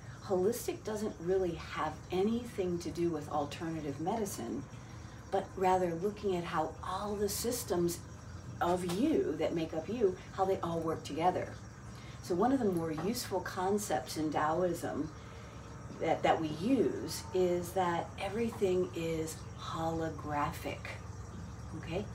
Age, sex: 40-59, female